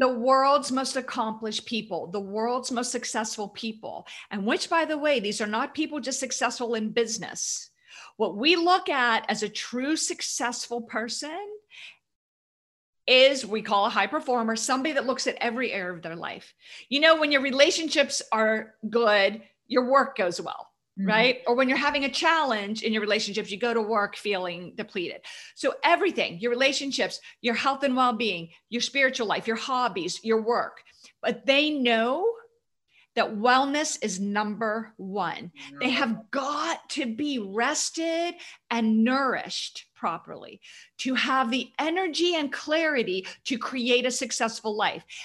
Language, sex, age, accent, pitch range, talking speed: English, female, 40-59, American, 220-295 Hz, 155 wpm